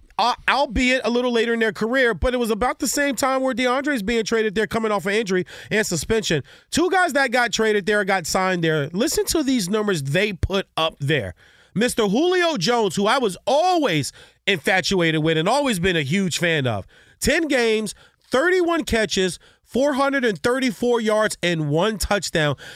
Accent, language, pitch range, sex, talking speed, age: American, English, 135-225 Hz, male, 180 wpm, 30-49